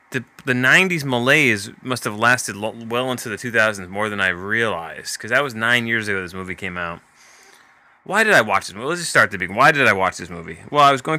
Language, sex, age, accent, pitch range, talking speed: English, male, 20-39, American, 95-120 Hz, 255 wpm